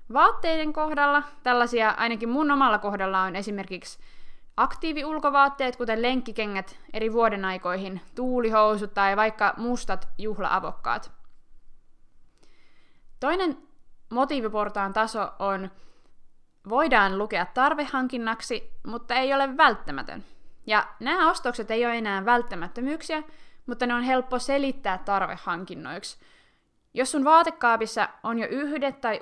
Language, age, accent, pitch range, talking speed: Finnish, 20-39, native, 205-260 Hz, 105 wpm